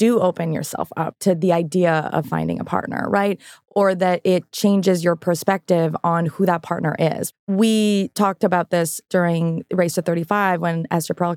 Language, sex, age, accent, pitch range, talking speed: English, female, 20-39, American, 165-195 Hz, 180 wpm